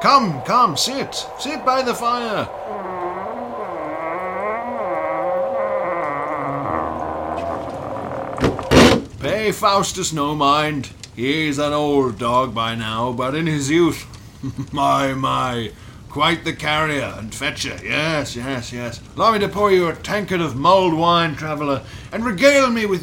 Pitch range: 125-205 Hz